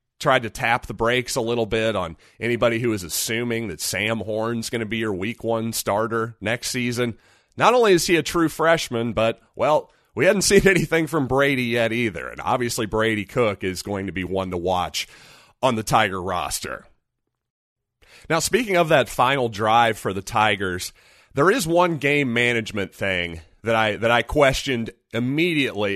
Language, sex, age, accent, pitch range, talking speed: English, male, 30-49, American, 105-135 Hz, 180 wpm